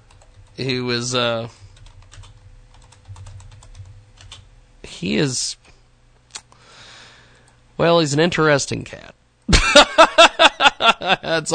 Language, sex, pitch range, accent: English, male, 100-150 Hz, American